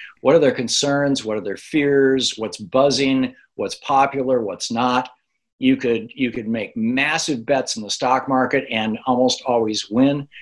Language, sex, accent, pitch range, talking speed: English, male, American, 120-160 Hz, 165 wpm